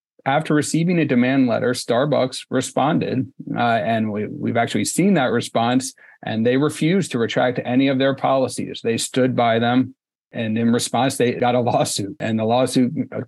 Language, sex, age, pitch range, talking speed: English, male, 40-59, 115-130 Hz, 165 wpm